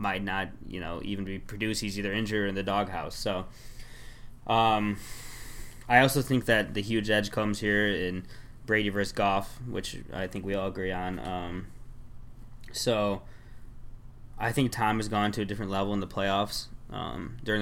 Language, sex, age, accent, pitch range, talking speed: English, male, 20-39, American, 95-115 Hz, 175 wpm